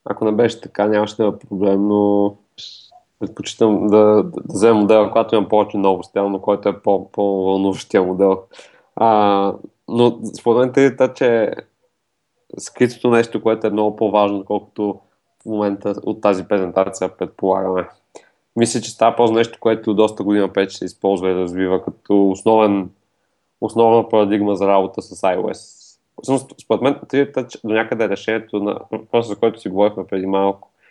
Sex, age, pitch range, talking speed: male, 20-39, 100-110 Hz, 155 wpm